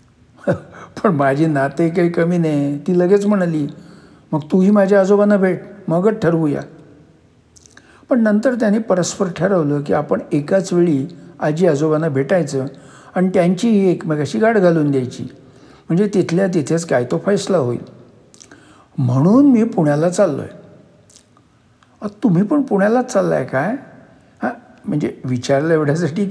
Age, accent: 60-79, native